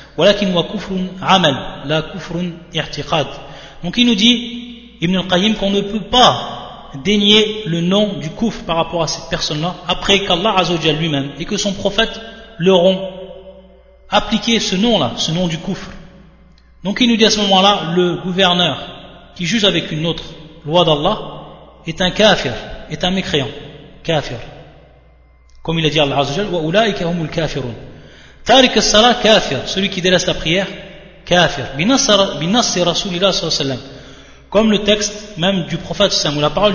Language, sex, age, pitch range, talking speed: French, male, 30-49, 155-200 Hz, 155 wpm